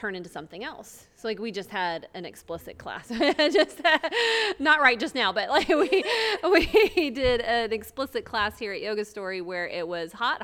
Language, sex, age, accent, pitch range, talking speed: English, female, 30-49, American, 180-245 Hz, 195 wpm